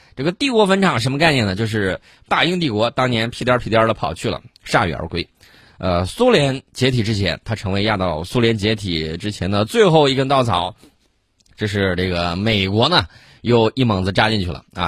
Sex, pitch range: male, 95-125 Hz